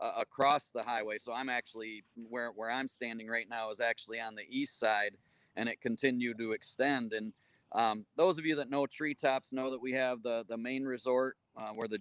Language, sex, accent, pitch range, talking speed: English, male, American, 115-130 Hz, 215 wpm